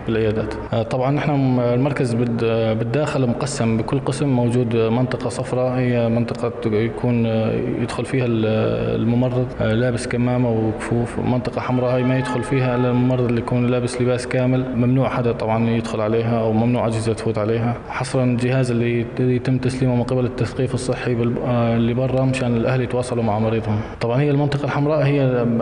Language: Arabic